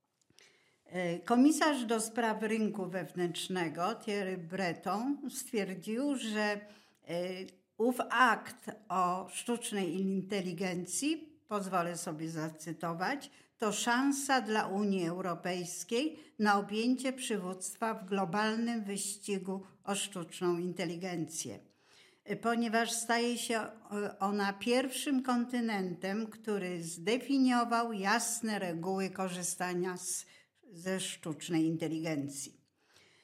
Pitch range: 185-230 Hz